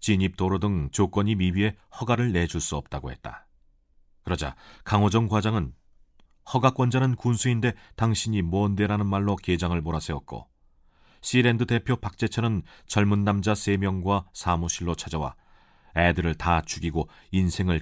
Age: 40-59